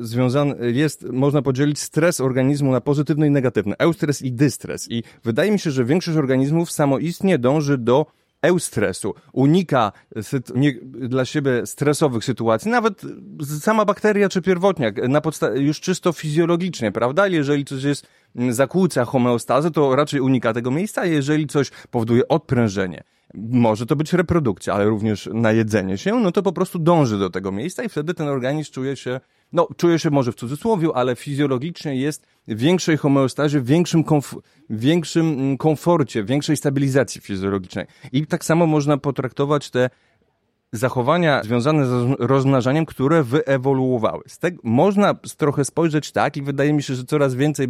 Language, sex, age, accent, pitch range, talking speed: Polish, male, 30-49, native, 125-165 Hz, 155 wpm